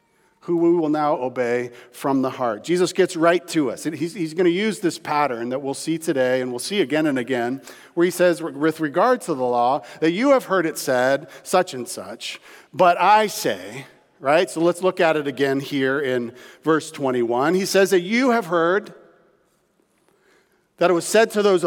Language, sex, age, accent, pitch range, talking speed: English, male, 40-59, American, 130-180 Hz, 200 wpm